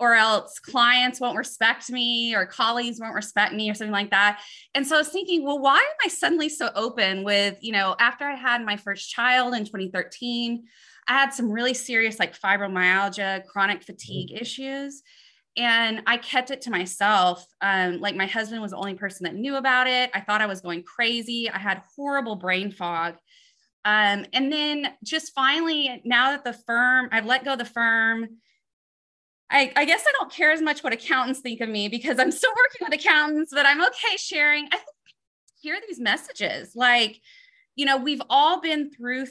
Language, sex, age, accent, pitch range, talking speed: English, female, 20-39, American, 205-275 Hz, 190 wpm